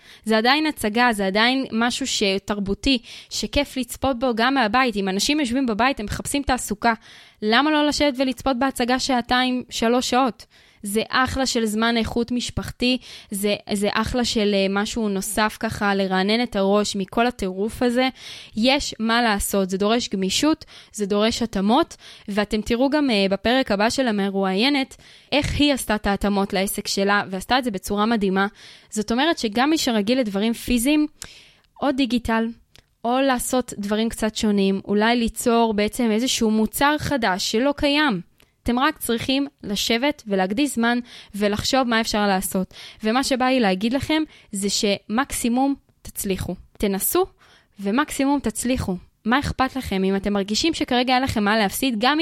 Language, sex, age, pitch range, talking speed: Hebrew, female, 20-39, 205-265 Hz, 150 wpm